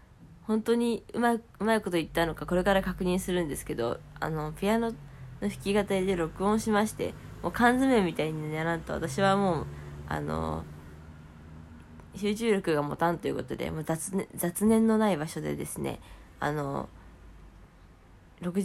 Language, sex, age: Japanese, female, 20-39